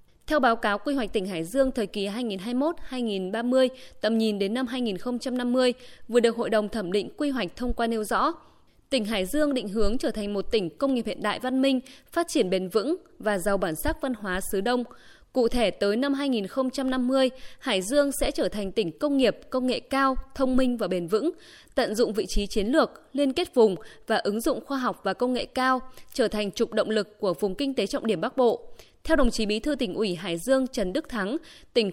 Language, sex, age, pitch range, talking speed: Vietnamese, female, 20-39, 215-270 Hz, 225 wpm